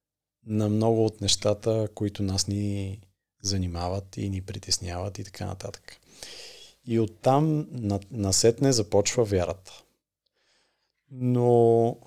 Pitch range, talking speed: 100-115 Hz, 105 wpm